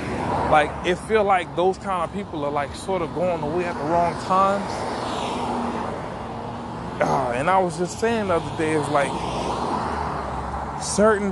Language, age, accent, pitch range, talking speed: English, 20-39, American, 135-175 Hz, 155 wpm